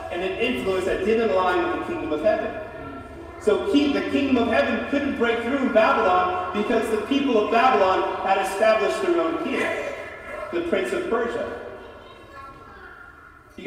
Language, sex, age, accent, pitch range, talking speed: English, male, 40-59, American, 220-345 Hz, 155 wpm